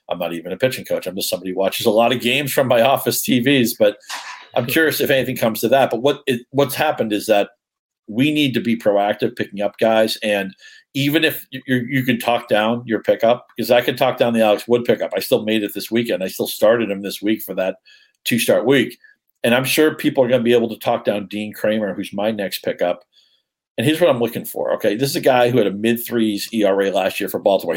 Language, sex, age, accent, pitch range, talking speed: English, male, 50-69, American, 110-135 Hz, 250 wpm